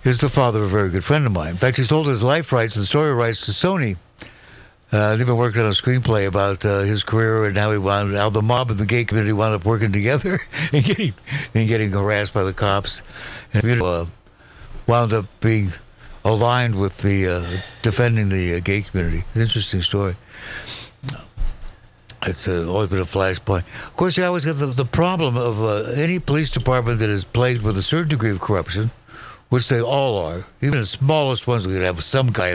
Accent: American